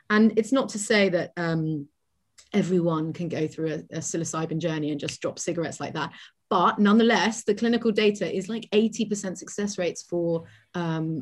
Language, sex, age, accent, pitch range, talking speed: English, female, 30-49, British, 165-215 Hz, 175 wpm